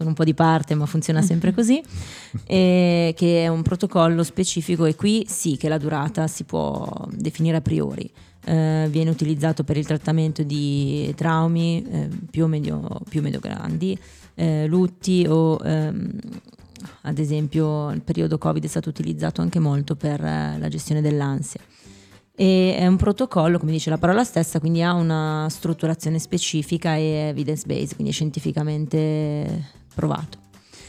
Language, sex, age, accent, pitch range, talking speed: Italian, female, 20-39, native, 155-175 Hz, 150 wpm